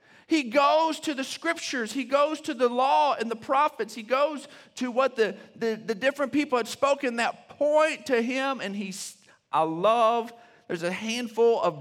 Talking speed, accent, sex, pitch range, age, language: 175 wpm, American, male, 180-265 Hz, 50-69, English